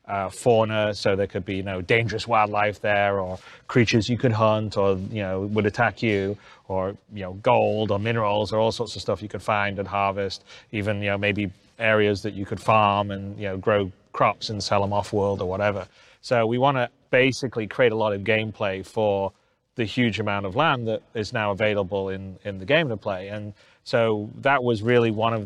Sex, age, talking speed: male, 30-49, 215 wpm